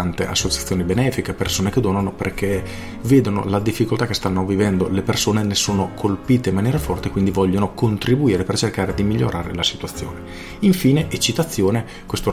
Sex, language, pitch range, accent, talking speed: male, Italian, 95-115 Hz, native, 155 wpm